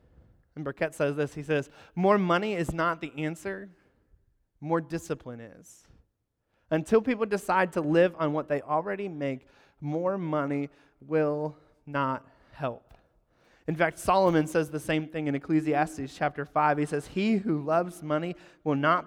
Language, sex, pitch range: English, male, 140-160 Hz